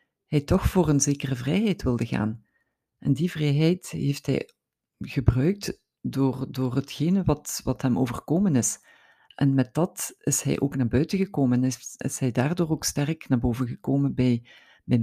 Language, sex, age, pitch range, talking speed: Dutch, female, 50-69, 130-160 Hz, 170 wpm